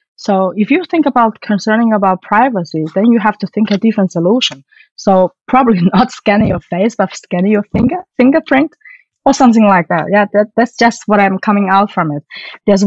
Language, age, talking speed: German, 20-39, 195 wpm